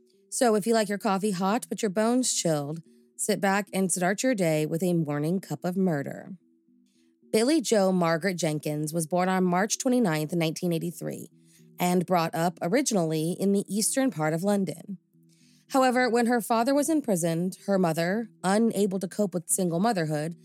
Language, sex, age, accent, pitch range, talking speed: English, female, 20-39, American, 170-225 Hz, 165 wpm